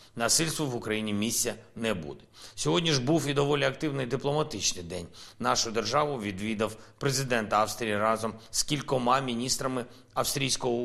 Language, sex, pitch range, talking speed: Ukrainian, male, 110-135 Hz, 135 wpm